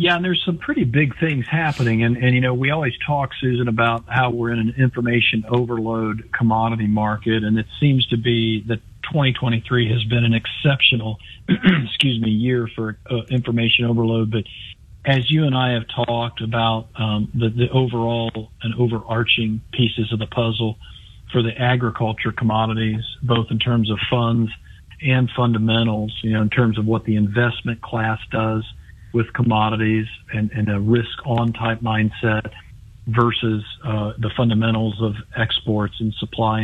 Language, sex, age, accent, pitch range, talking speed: English, male, 50-69, American, 110-125 Hz, 160 wpm